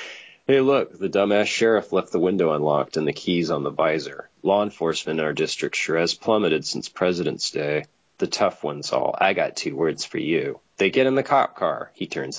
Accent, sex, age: American, male, 30-49